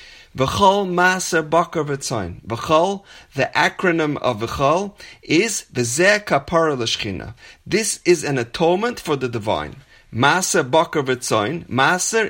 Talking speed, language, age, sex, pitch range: 110 wpm, English, 30-49, male, 125-185 Hz